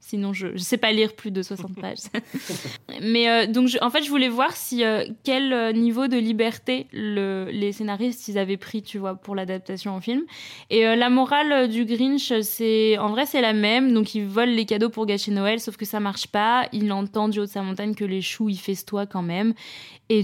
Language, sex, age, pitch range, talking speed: French, female, 20-39, 200-245 Hz, 230 wpm